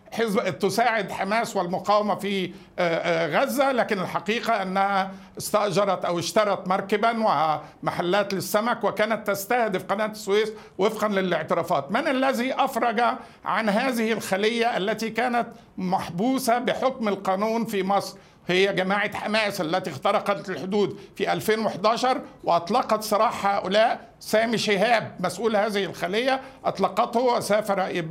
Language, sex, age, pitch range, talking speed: Arabic, male, 50-69, 195-235 Hz, 110 wpm